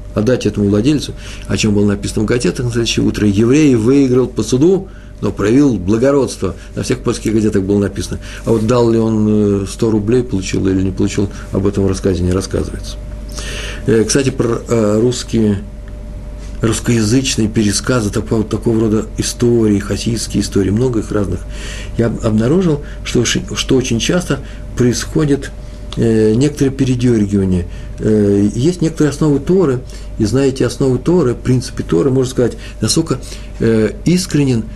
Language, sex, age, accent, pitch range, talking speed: Russian, male, 50-69, native, 100-135 Hz, 140 wpm